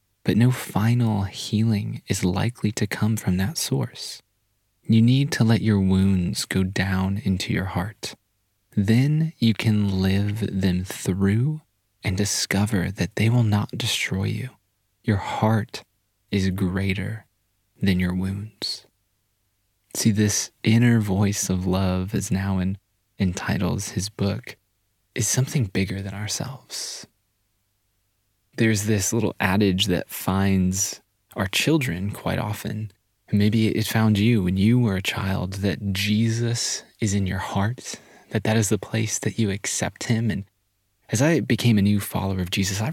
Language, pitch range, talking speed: English, 95-110 Hz, 145 wpm